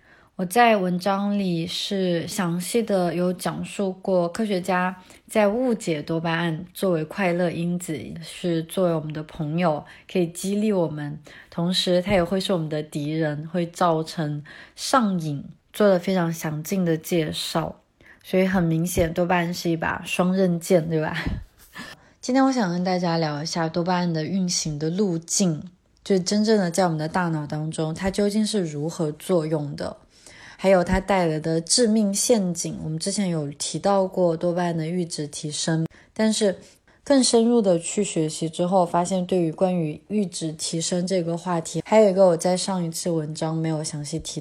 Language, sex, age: Chinese, female, 20-39